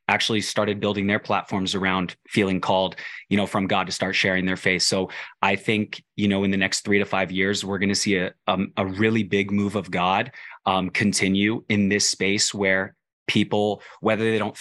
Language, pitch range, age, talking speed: English, 95-105 Hz, 20-39, 210 wpm